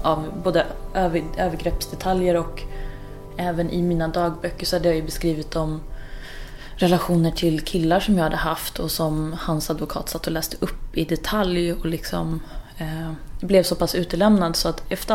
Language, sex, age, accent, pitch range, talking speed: Swedish, female, 20-39, native, 160-180 Hz, 165 wpm